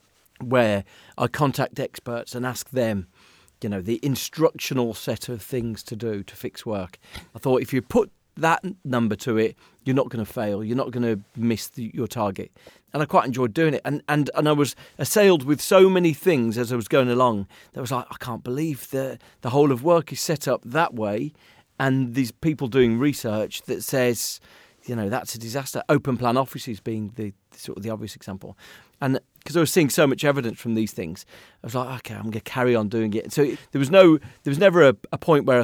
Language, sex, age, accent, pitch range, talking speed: English, male, 40-59, British, 115-145 Hz, 220 wpm